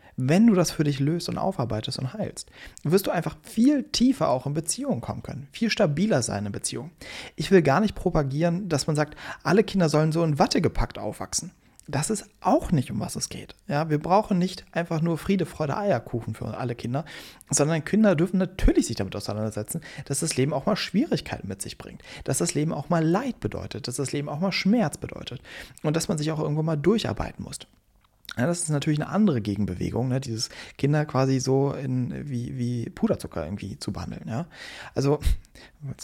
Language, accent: German, German